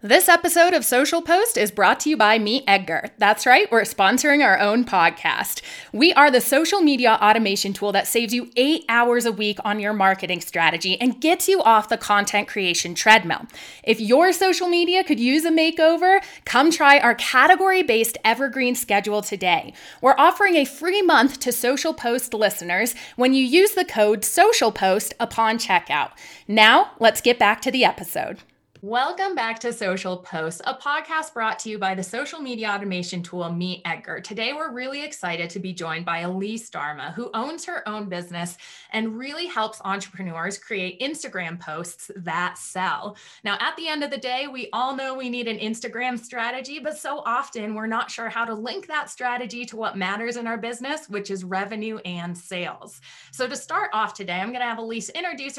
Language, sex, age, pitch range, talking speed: English, female, 30-49, 205-285 Hz, 190 wpm